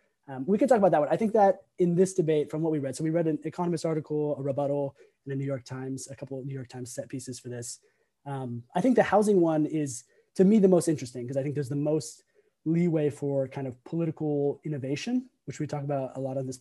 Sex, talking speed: male, 260 wpm